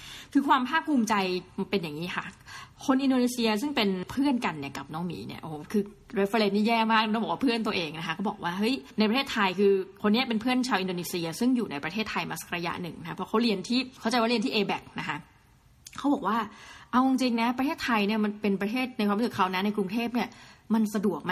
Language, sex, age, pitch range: Thai, female, 20-39, 190-235 Hz